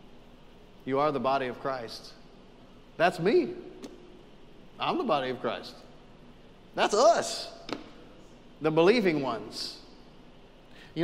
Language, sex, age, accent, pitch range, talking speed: English, male, 40-59, American, 165-265 Hz, 105 wpm